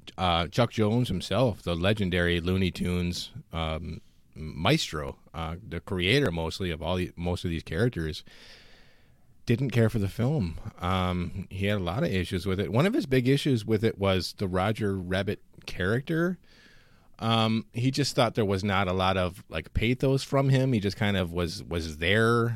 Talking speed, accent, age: 180 wpm, American, 30-49